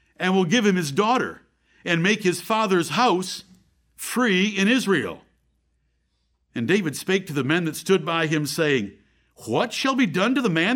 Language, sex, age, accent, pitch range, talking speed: English, male, 60-79, American, 155-210 Hz, 180 wpm